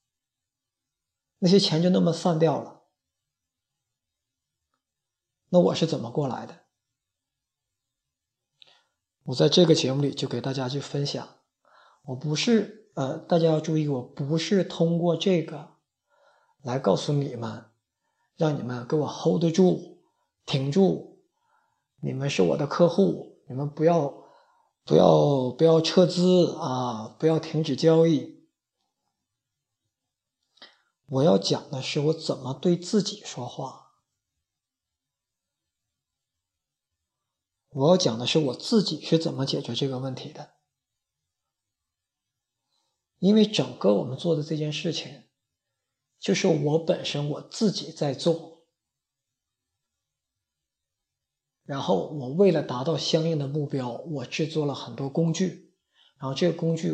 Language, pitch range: Chinese, 135-170 Hz